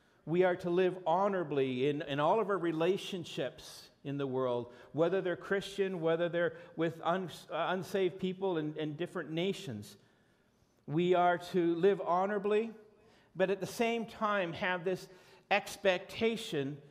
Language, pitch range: English, 160-200 Hz